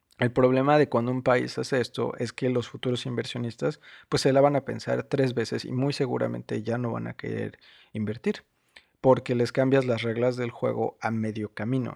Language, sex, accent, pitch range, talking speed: Spanish, male, Mexican, 115-140 Hz, 200 wpm